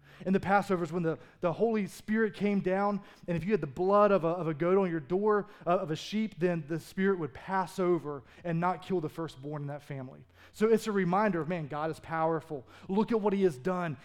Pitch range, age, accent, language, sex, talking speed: 150-200 Hz, 20-39, American, English, male, 245 wpm